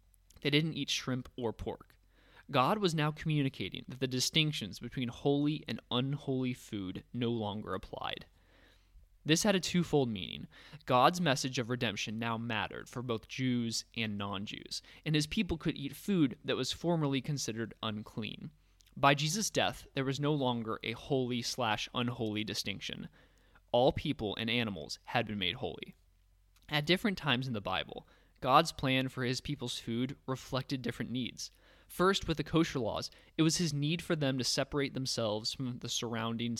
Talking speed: 160 wpm